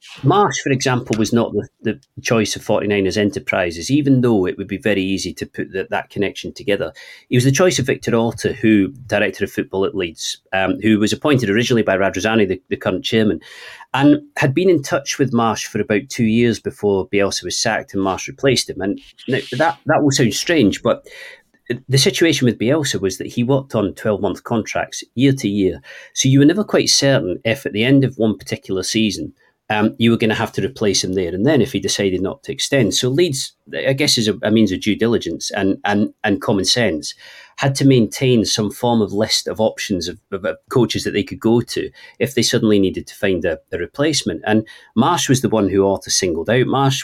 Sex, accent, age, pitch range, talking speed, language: male, British, 40-59, 100-135 Hz, 220 wpm, English